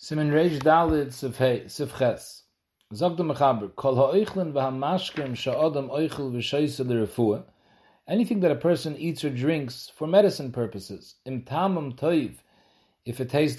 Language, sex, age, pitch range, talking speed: English, male, 40-59, 120-155 Hz, 55 wpm